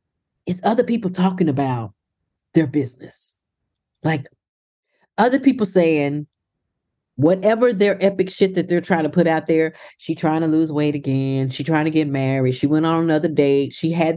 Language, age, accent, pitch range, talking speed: English, 40-59, American, 160-230 Hz, 170 wpm